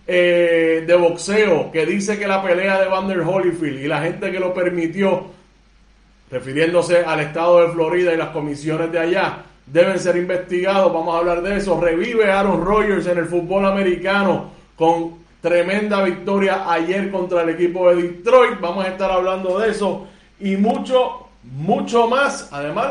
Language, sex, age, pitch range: Spanish, male, 30-49, 170-210 Hz